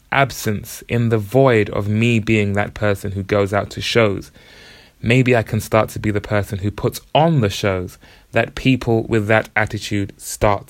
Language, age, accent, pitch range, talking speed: English, 20-39, British, 100-115 Hz, 185 wpm